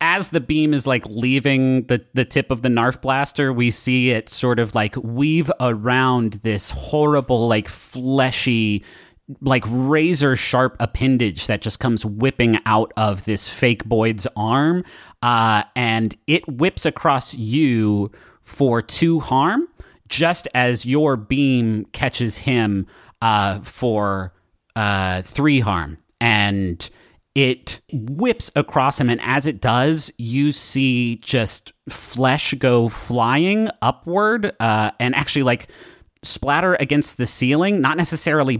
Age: 30-49